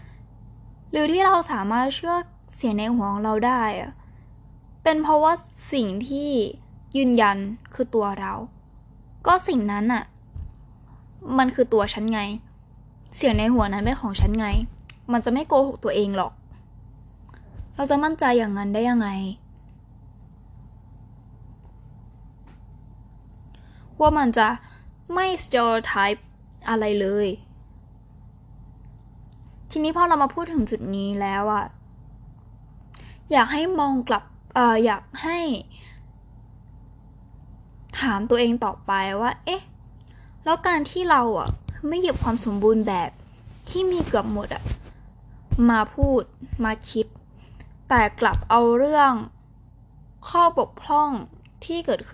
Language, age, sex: Thai, 10-29, female